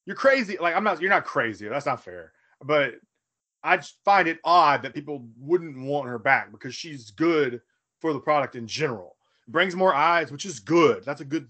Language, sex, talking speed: English, male, 210 wpm